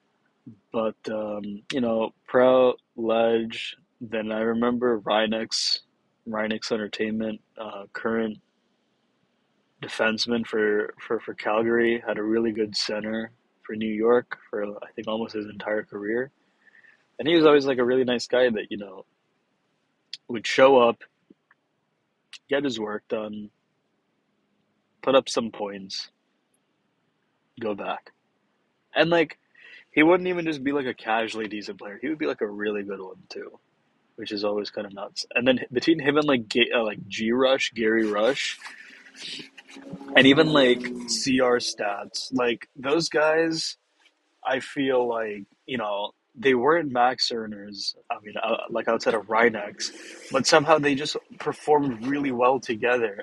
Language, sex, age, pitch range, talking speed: English, male, 20-39, 110-130 Hz, 145 wpm